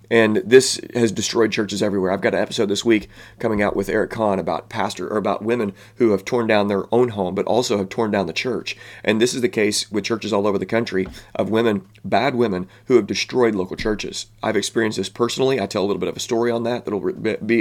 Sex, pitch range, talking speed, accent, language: male, 100-115 Hz, 245 wpm, American, English